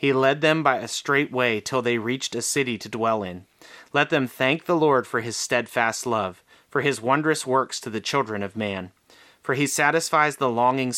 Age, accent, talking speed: 30-49, American, 210 wpm